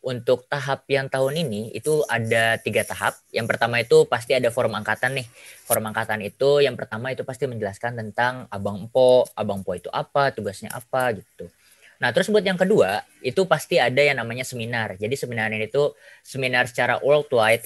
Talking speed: 180 wpm